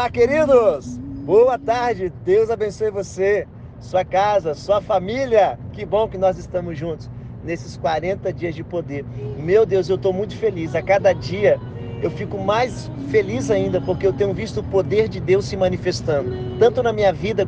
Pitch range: 135-220 Hz